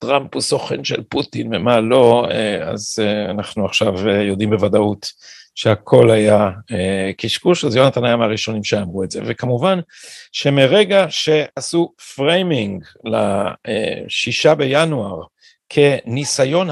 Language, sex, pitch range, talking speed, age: Hebrew, male, 110-155 Hz, 105 wpm, 50-69